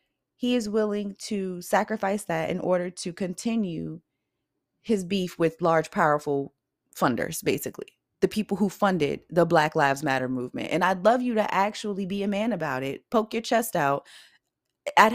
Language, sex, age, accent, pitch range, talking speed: English, female, 20-39, American, 170-215 Hz, 165 wpm